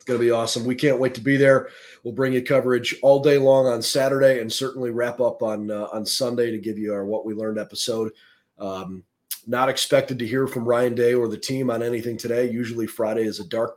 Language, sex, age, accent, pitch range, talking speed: English, male, 30-49, American, 110-125 Hz, 240 wpm